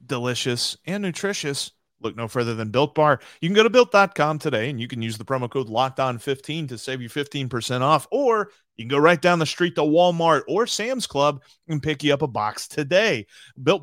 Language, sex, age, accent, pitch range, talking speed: English, male, 30-49, American, 130-170 Hz, 220 wpm